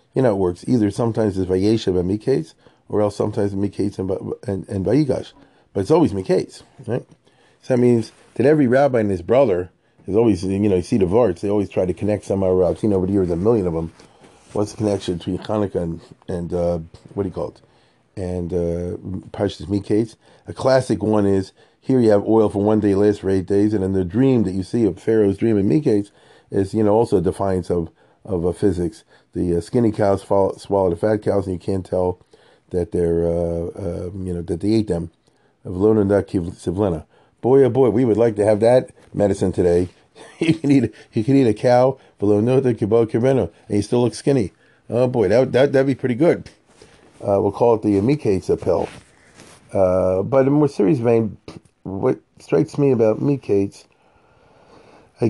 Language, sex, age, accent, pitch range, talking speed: English, male, 30-49, American, 95-115 Hz, 200 wpm